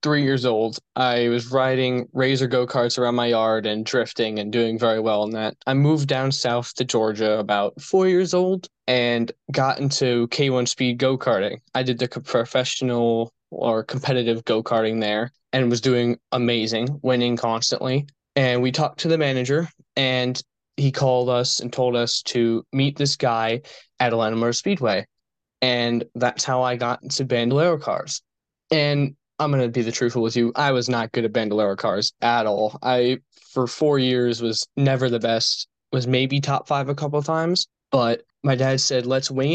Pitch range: 120-140 Hz